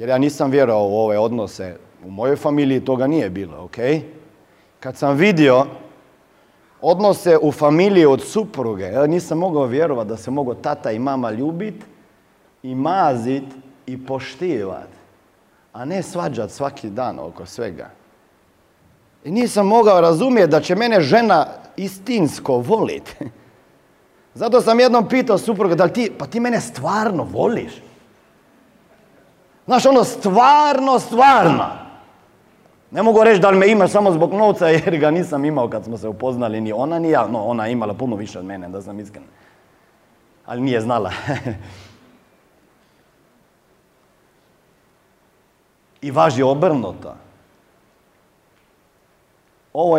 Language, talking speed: Croatian, 130 wpm